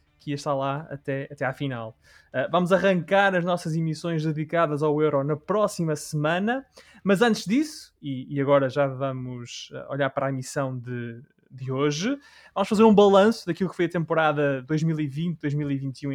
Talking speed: 165 wpm